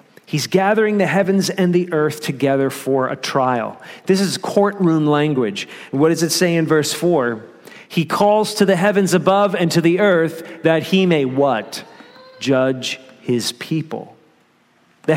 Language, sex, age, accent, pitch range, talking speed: English, male, 40-59, American, 150-205 Hz, 160 wpm